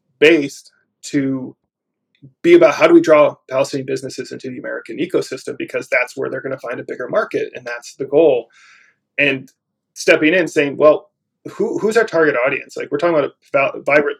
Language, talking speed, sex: English, 180 wpm, male